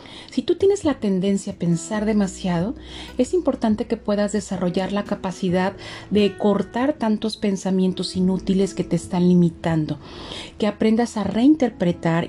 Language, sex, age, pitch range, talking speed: Spanish, female, 40-59, 185-225 Hz, 135 wpm